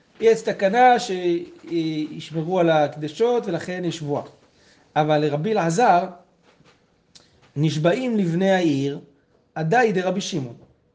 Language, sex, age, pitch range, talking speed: Hebrew, male, 30-49, 150-190 Hz, 90 wpm